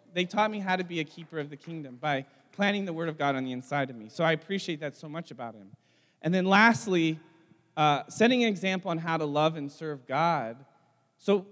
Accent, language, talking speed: American, English, 235 wpm